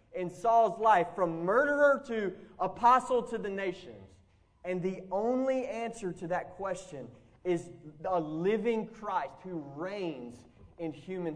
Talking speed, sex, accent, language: 130 wpm, male, American, English